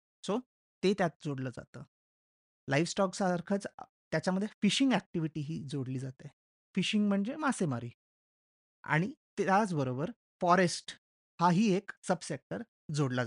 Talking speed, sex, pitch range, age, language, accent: 90 wpm, male, 140-185 Hz, 30-49, Marathi, native